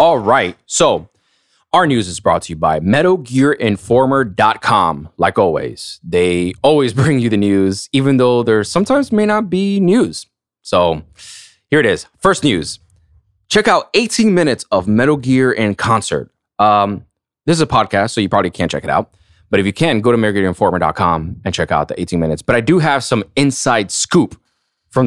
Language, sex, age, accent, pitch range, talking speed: English, male, 20-39, American, 90-125 Hz, 180 wpm